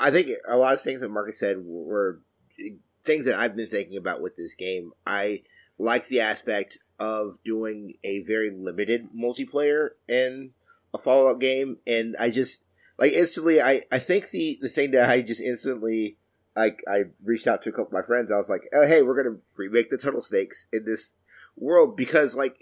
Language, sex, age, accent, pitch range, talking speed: English, male, 30-49, American, 110-135 Hz, 200 wpm